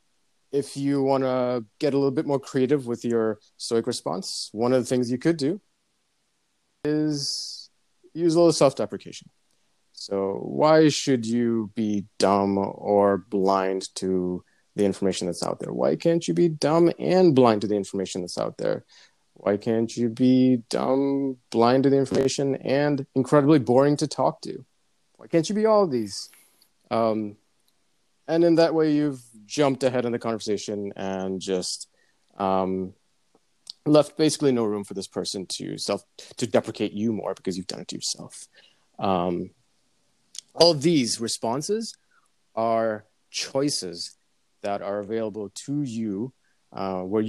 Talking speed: 155 wpm